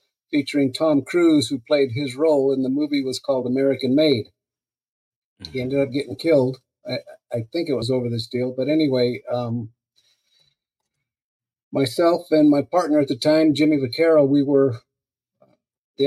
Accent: American